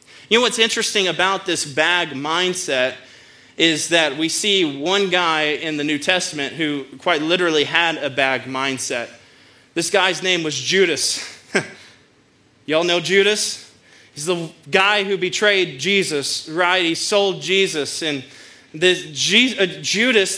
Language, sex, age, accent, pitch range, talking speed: English, male, 20-39, American, 165-205 Hz, 135 wpm